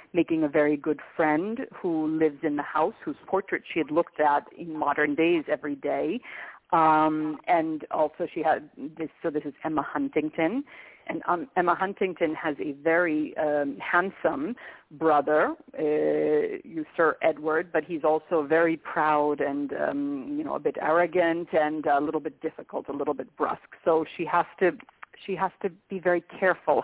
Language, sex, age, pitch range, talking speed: English, female, 40-59, 150-170 Hz, 170 wpm